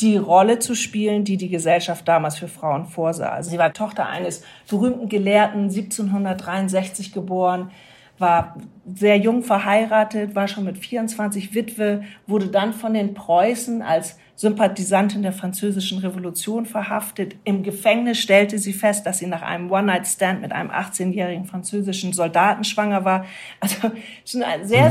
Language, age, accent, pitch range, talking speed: German, 50-69, German, 185-220 Hz, 145 wpm